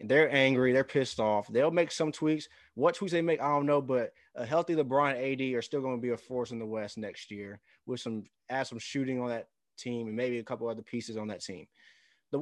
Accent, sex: American, male